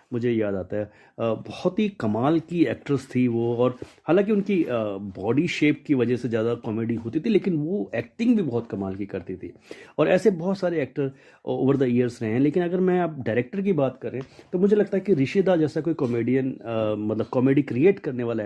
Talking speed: 210 wpm